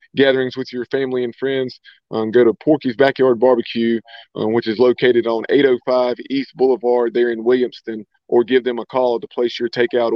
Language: English